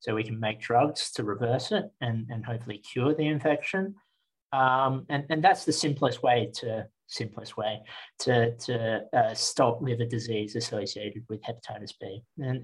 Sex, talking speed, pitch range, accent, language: male, 165 wpm, 115-145 Hz, Australian, English